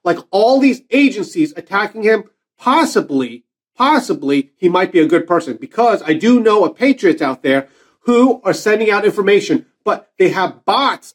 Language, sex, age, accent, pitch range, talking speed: English, male, 40-59, American, 195-275 Hz, 165 wpm